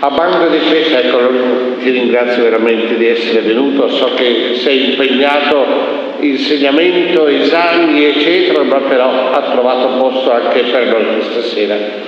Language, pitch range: Italian, 125-180 Hz